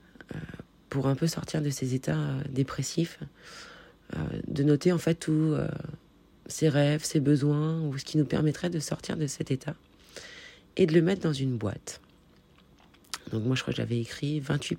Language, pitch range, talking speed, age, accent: French, 135-165 Hz, 180 wpm, 30-49, French